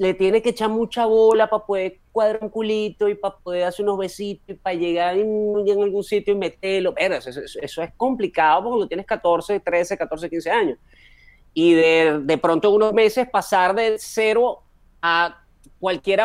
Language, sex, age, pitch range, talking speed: Spanish, male, 30-49, 145-205 Hz, 185 wpm